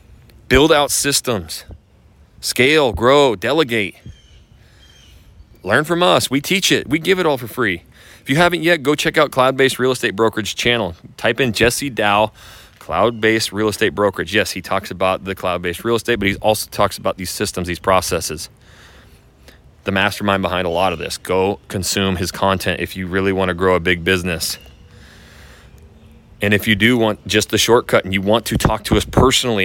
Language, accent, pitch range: English, American, 90-120 Hz